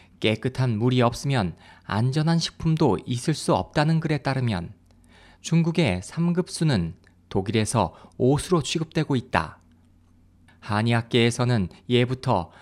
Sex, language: male, Korean